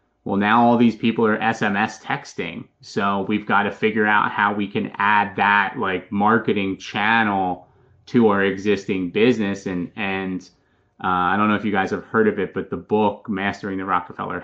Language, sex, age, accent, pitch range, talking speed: English, male, 30-49, American, 95-115 Hz, 185 wpm